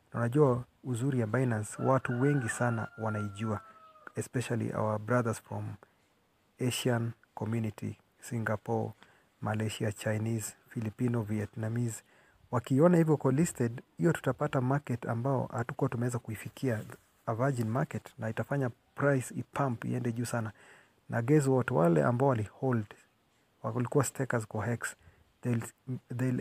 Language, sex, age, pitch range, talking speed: Swahili, male, 40-59, 110-130 Hz, 125 wpm